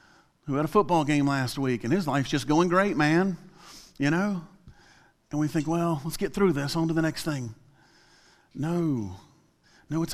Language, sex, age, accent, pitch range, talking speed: English, male, 40-59, American, 130-170 Hz, 190 wpm